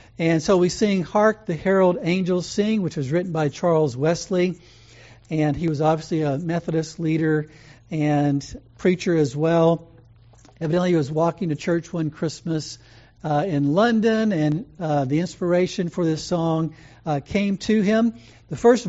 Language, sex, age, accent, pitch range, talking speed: English, male, 60-79, American, 145-190 Hz, 160 wpm